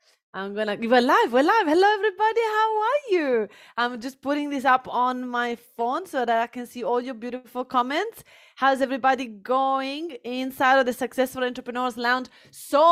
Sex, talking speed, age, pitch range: female, 185 wpm, 30-49, 215-265 Hz